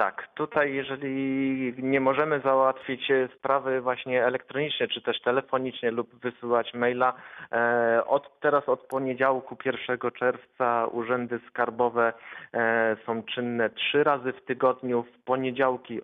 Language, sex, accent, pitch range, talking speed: Polish, male, native, 115-130 Hz, 115 wpm